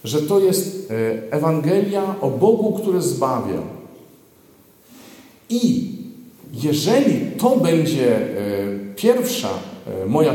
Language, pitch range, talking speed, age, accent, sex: Polish, 110-145 Hz, 80 wpm, 50-69, native, male